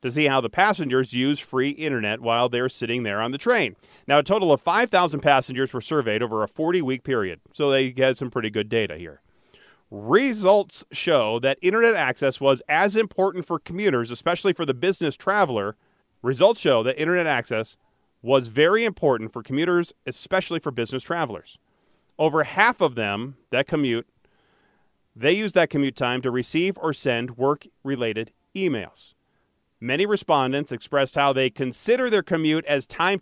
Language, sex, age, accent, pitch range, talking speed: English, male, 40-59, American, 130-175 Hz, 165 wpm